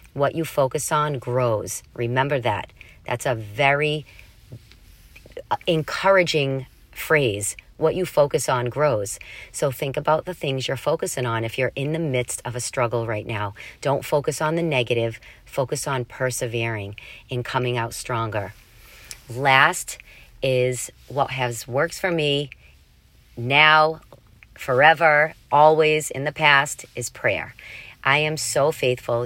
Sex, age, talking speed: female, 40-59, 135 wpm